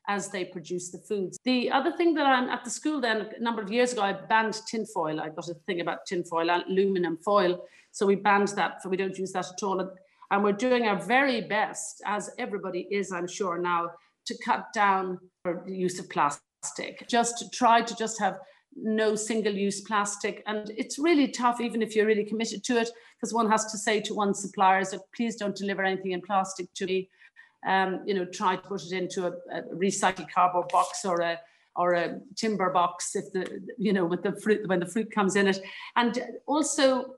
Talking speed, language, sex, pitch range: 215 wpm, English, female, 190-230 Hz